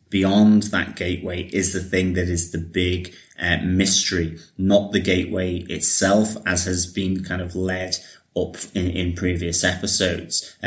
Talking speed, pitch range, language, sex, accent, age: 150 wpm, 90-100 Hz, English, male, British, 30-49